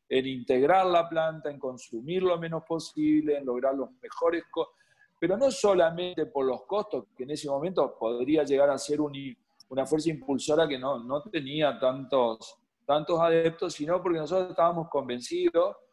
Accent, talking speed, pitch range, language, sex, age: Argentinian, 160 wpm, 135-180 Hz, Spanish, male, 40-59